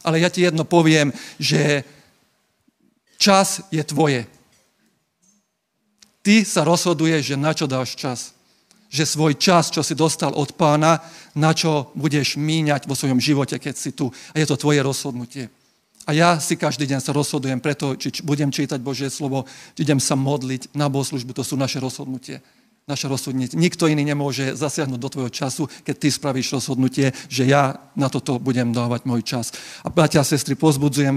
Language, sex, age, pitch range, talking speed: Slovak, male, 40-59, 135-155 Hz, 170 wpm